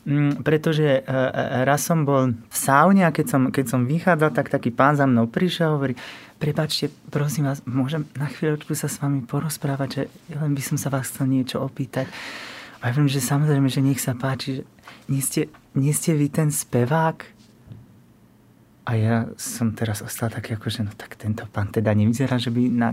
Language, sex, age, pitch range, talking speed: Slovak, male, 30-49, 135-160 Hz, 195 wpm